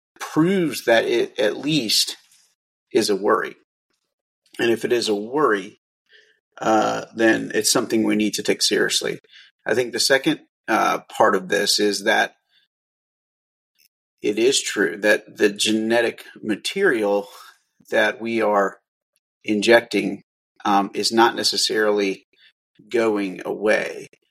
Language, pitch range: English, 105-130 Hz